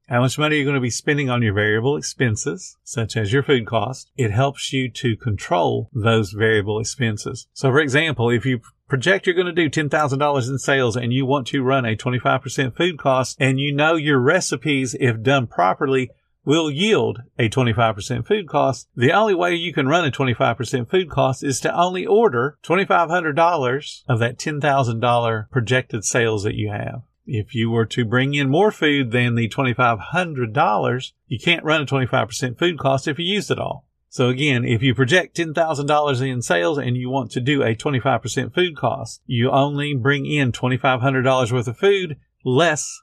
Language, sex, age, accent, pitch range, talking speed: English, male, 50-69, American, 120-150 Hz, 185 wpm